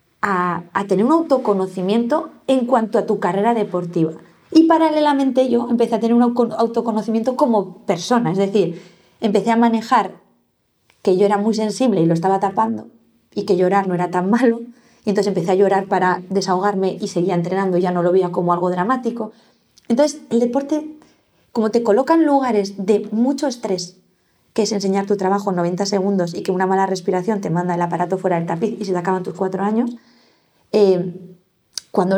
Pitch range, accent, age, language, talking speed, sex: 190-235 Hz, Spanish, 20-39, Spanish, 185 wpm, female